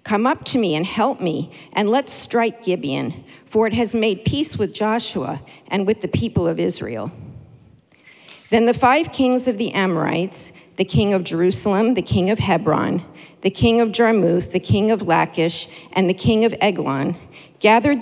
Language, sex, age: English, female, 50-69